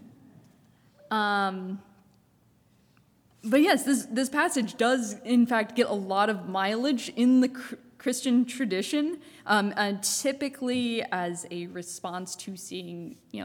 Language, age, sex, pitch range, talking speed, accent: English, 20-39, female, 190-240 Hz, 125 wpm, American